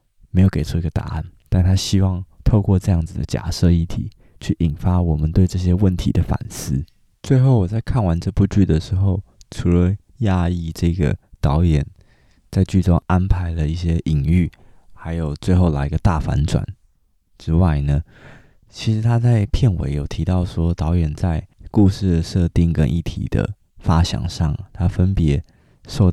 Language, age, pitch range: Chinese, 20-39, 80-100 Hz